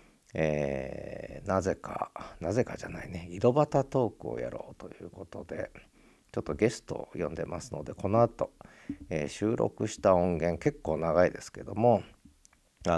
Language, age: Japanese, 50-69